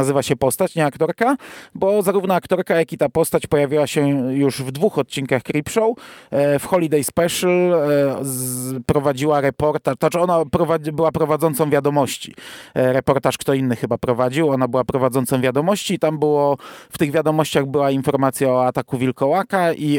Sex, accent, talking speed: male, native, 155 wpm